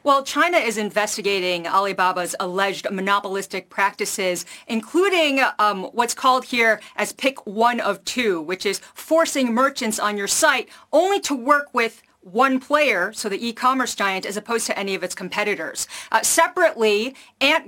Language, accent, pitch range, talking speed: English, American, 210-275 Hz, 155 wpm